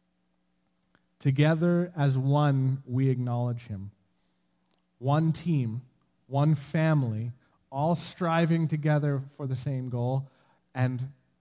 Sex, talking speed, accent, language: male, 95 wpm, American, English